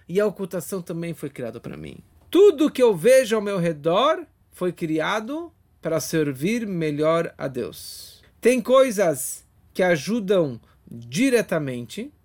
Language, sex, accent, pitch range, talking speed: Portuguese, male, Brazilian, 155-220 Hz, 130 wpm